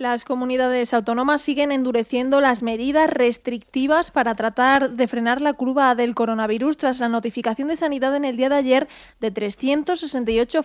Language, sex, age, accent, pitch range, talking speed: Spanish, female, 20-39, Spanish, 235-290 Hz, 160 wpm